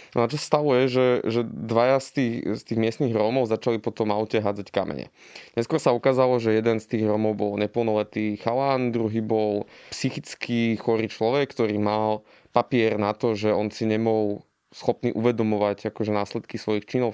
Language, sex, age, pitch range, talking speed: Slovak, male, 20-39, 110-130 Hz, 180 wpm